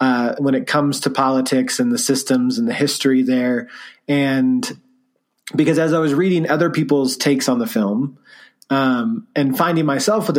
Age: 30-49